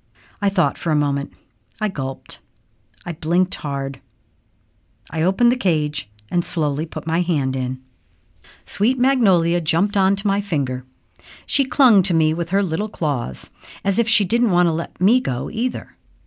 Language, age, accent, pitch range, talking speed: English, 50-69, American, 125-195 Hz, 160 wpm